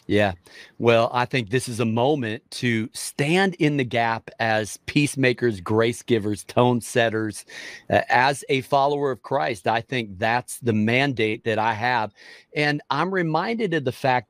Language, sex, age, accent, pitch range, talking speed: English, male, 40-59, American, 115-145 Hz, 165 wpm